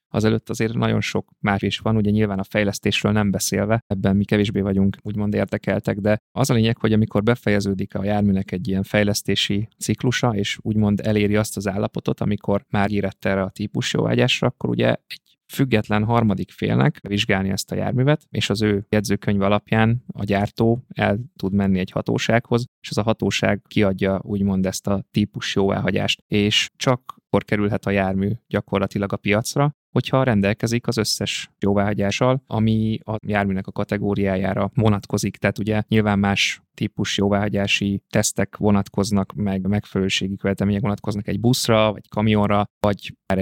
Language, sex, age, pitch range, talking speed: Hungarian, male, 20-39, 100-110 Hz, 160 wpm